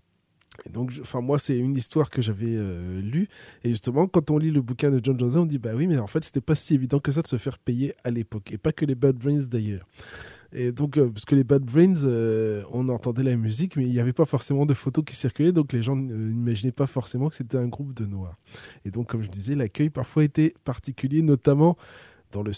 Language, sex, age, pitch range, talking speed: French, male, 20-39, 110-150 Hz, 250 wpm